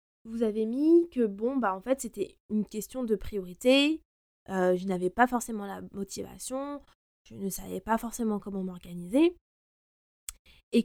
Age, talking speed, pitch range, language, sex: 20-39, 155 wpm, 200-275 Hz, French, female